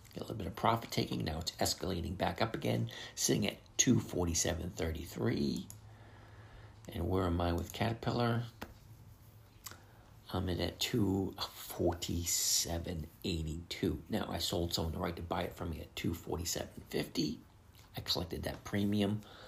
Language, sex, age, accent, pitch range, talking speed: English, male, 50-69, American, 85-110 Hz, 150 wpm